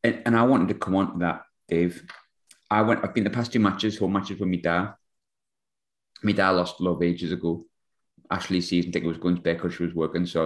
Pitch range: 85-100 Hz